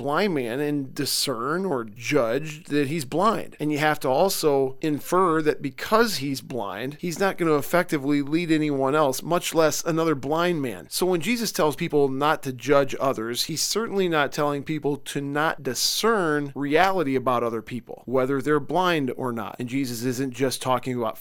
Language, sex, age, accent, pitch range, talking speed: English, male, 40-59, American, 130-160 Hz, 180 wpm